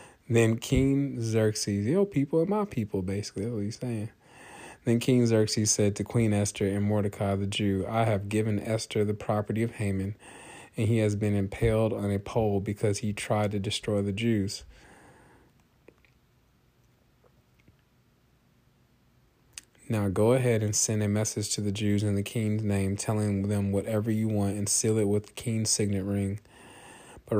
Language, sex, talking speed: English, male, 165 wpm